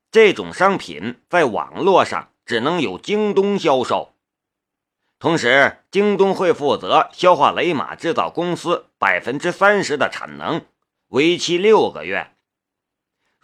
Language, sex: Chinese, male